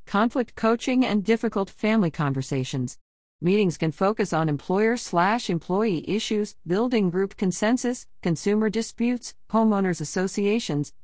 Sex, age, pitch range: female, 40-59, 145-205 Hz